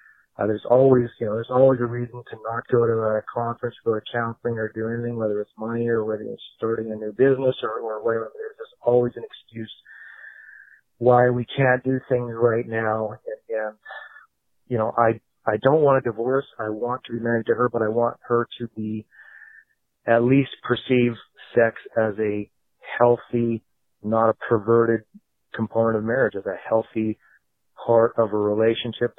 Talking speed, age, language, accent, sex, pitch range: 185 wpm, 30-49, English, American, male, 115-125 Hz